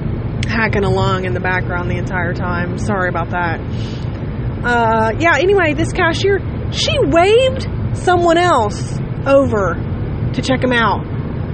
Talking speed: 130 wpm